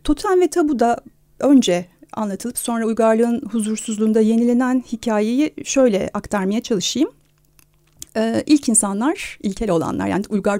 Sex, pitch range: female, 220-275 Hz